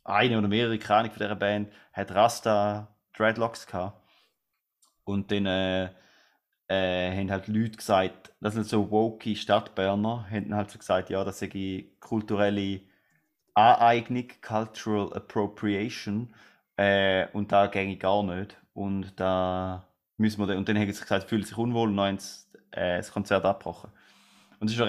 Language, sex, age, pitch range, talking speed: German, male, 20-39, 100-115 Hz, 150 wpm